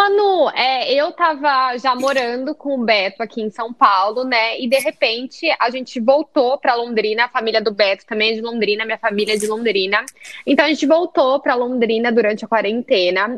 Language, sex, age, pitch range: Portuguese, female, 10-29, 230-300 Hz